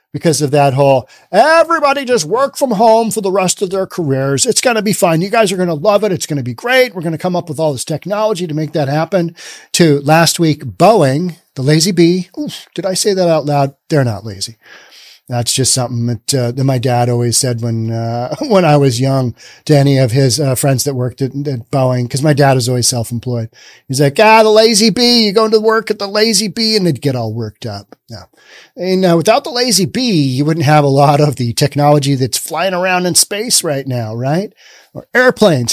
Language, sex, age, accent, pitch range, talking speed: English, male, 40-59, American, 140-210 Hz, 235 wpm